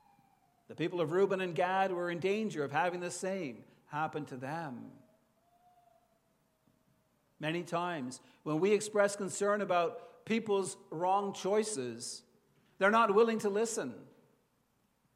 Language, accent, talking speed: English, American, 125 wpm